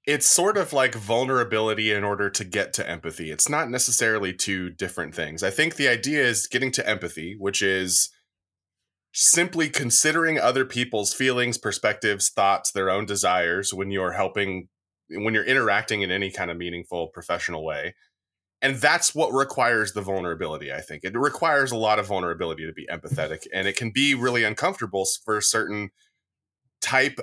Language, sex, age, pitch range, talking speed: English, male, 30-49, 95-125 Hz, 170 wpm